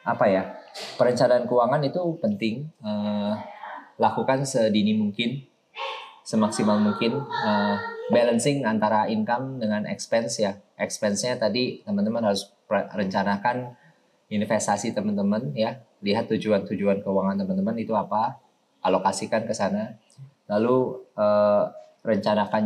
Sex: male